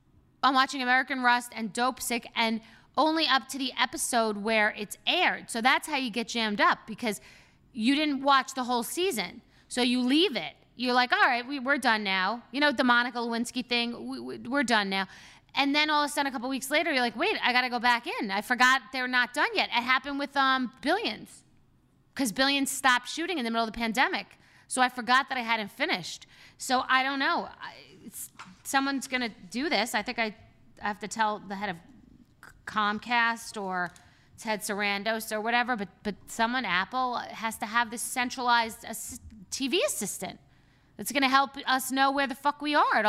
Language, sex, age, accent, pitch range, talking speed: English, female, 30-49, American, 215-270 Hz, 210 wpm